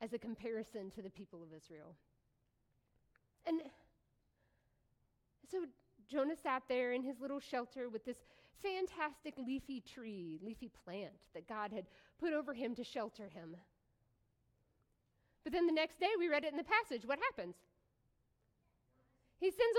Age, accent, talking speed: 40-59, American, 145 wpm